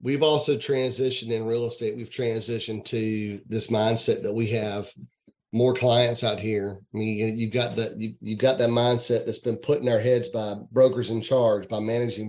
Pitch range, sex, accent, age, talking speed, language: 105-120 Hz, male, American, 30-49, 190 wpm, English